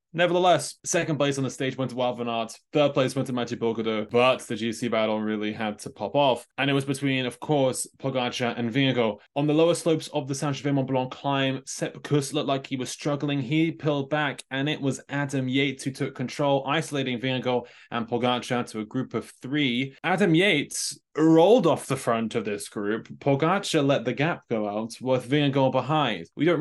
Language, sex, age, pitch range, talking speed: English, male, 20-39, 125-150 Hz, 200 wpm